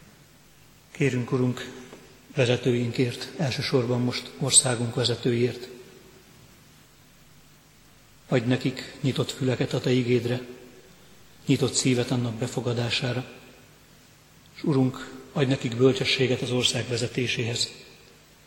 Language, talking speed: Hungarian, 85 wpm